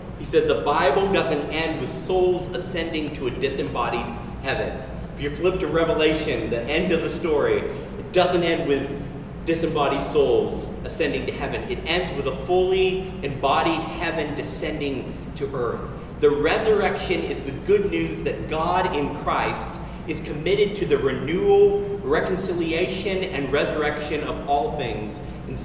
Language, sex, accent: English, male, American